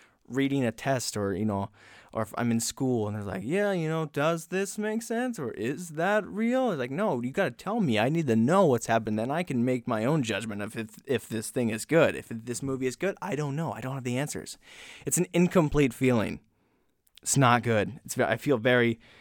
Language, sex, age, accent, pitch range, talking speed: English, male, 20-39, American, 110-145 Hz, 240 wpm